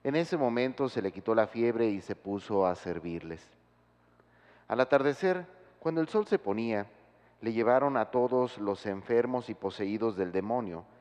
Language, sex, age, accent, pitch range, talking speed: Spanish, male, 40-59, Mexican, 95-130 Hz, 165 wpm